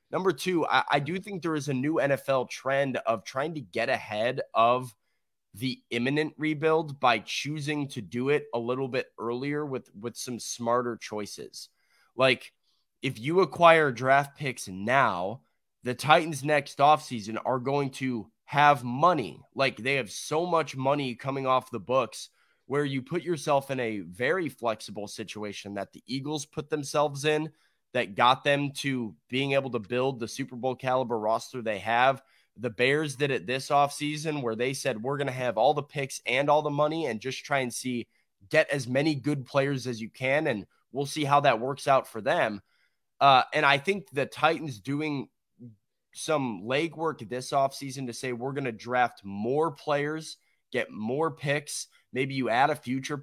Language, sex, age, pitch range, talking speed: English, male, 20-39, 125-150 Hz, 180 wpm